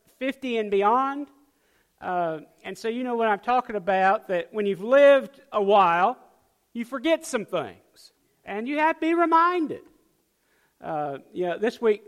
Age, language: 50-69, English